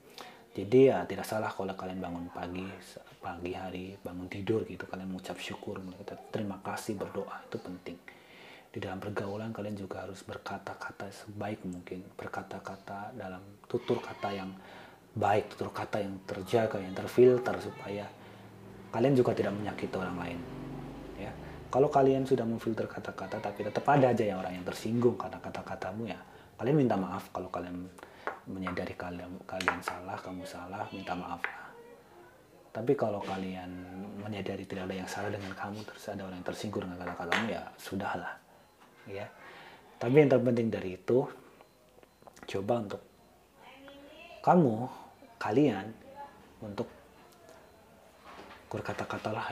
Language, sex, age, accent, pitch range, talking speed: Indonesian, male, 30-49, native, 95-115 Hz, 135 wpm